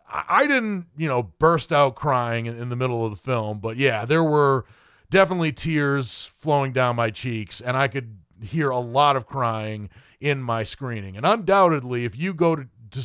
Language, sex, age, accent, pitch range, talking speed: English, male, 40-59, American, 120-155 Hz, 190 wpm